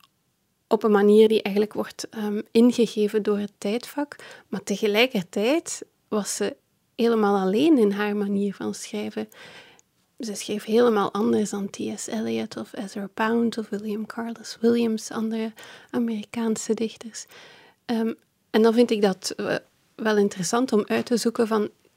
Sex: female